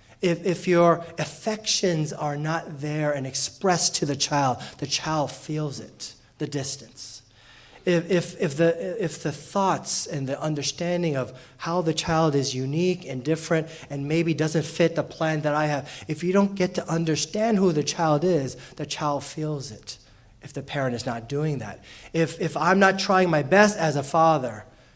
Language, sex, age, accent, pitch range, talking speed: English, male, 30-49, American, 130-170 Hz, 185 wpm